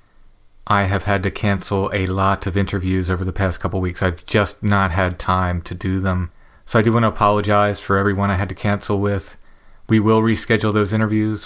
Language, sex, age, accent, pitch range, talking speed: English, male, 30-49, American, 95-105 Hz, 215 wpm